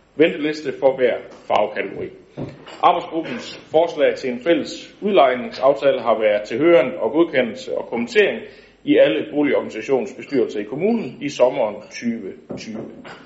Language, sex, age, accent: Danish, male, 60-79, native